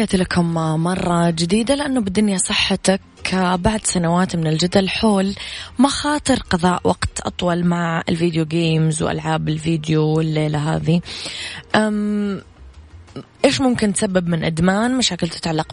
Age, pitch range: 20-39, 165-195 Hz